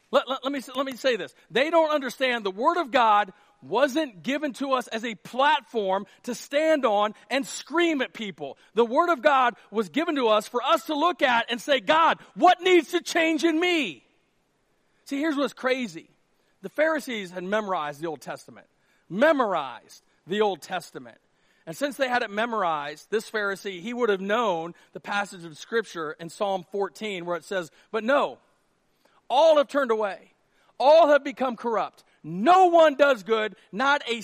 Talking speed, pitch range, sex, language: 185 wpm, 195-275 Hz, male, English